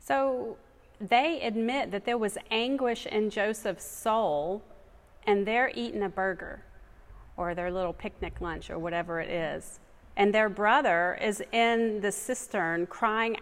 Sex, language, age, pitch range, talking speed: female, English, 40-59, 185-225 Hz, 145 wpm